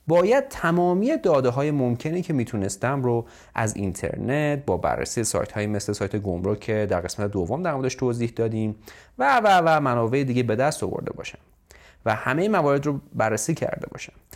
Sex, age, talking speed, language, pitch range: male, 30-49, 170 wpm, Persian, 105-145 Hz